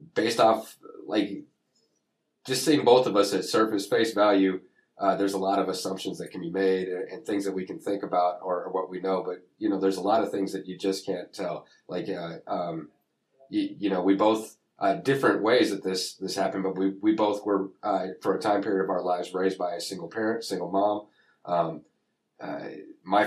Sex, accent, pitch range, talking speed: male, American, 95-105 Hz, 220 wpm